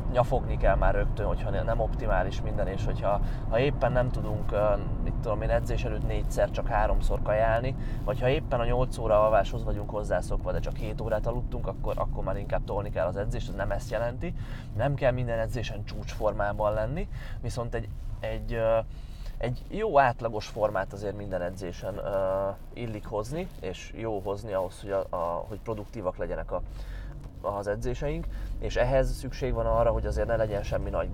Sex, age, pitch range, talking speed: male, 20-39, 105-125 Hz, 175 wpm